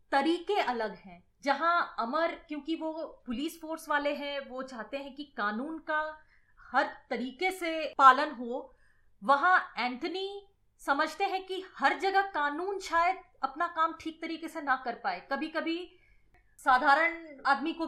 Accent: native